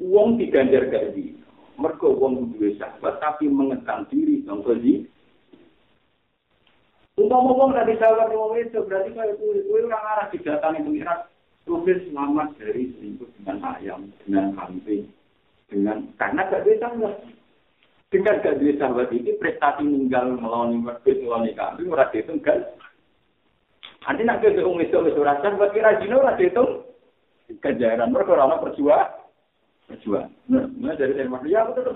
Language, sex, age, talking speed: Malay, male, 50-69, 160 wpm